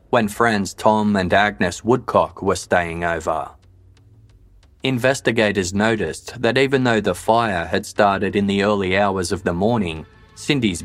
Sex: male